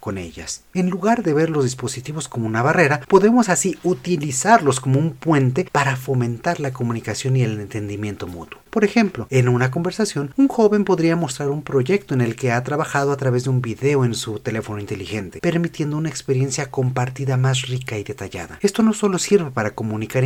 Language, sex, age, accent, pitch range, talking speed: Spanish, male, 40-59, Mexican, 120-165 Hz, 190 wpm